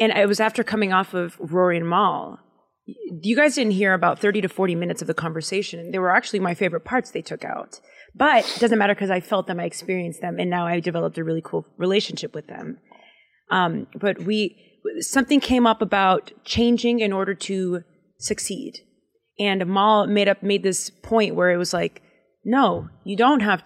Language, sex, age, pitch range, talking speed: English, female, 30-49, 185-225 Hz, 200 wpm